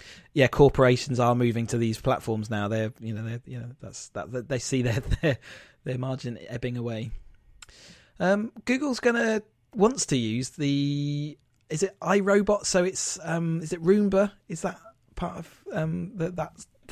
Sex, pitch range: male, 130-165 Hz